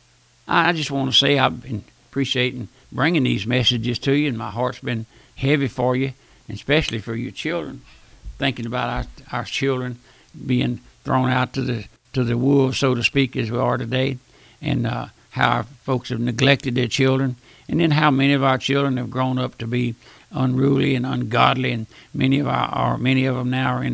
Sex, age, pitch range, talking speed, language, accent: male, 60-79, 120-135 Hz, 200 wpm, English, American